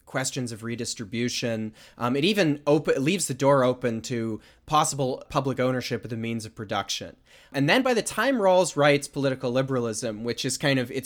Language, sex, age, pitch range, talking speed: English, male, 20-39, 125-150 Hz, 190 wpm